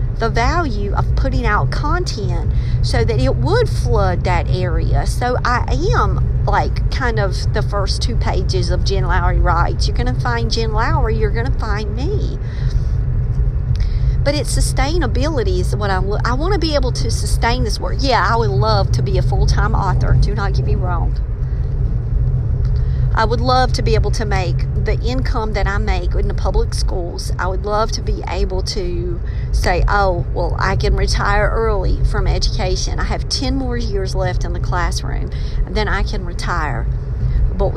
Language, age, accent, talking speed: English, 50-69, American, 175 wpm